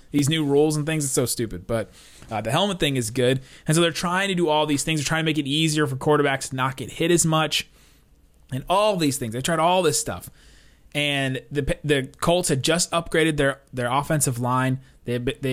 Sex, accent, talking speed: male, American, 225 wpm